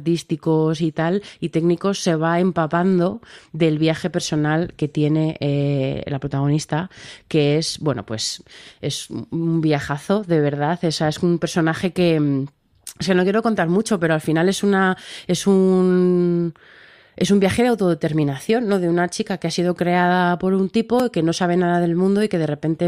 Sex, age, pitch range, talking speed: female, 20-39, 155-185 Hz, 185 wpm